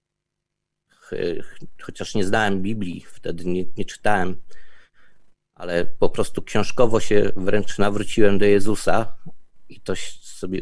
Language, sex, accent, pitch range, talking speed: Polish, male, native, 95-110 Hz, 115 wpm